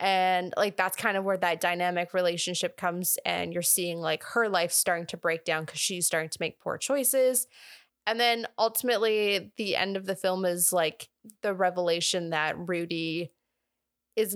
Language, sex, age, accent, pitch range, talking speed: English, female, 20-39, American, 175-210 Hz, 175 wpm